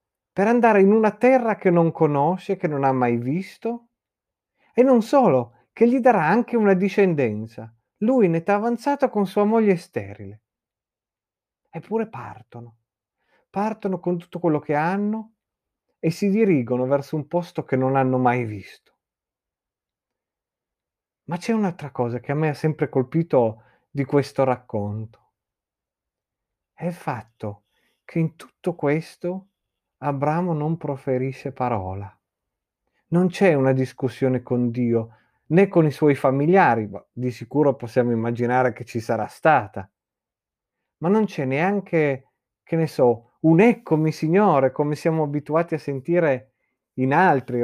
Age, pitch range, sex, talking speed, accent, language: 40-59, 120-180 Hz, male, 135 wpm, native, Italian